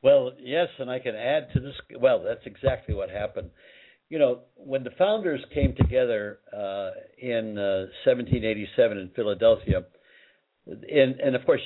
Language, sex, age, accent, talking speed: English, male, 60-79, American, 155 wpm